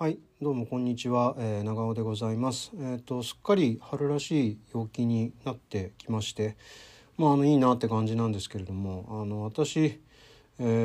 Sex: male